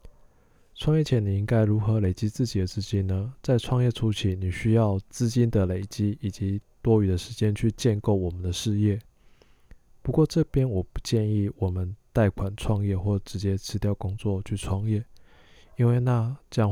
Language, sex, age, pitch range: Chinese, male, 20-39, 95-115 Hz